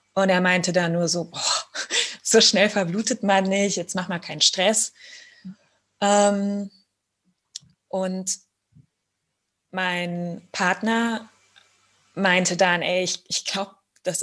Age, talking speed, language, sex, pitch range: 20-39, 120 wpm, German, female, 180-215 Hz